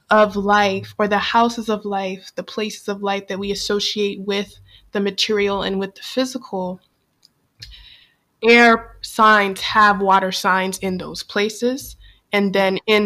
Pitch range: 190-210 Hz